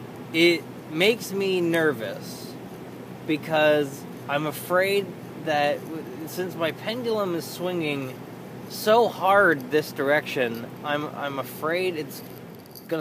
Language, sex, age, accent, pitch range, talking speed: English, male, 20-39, American, 125-170 Hz, 100 wpm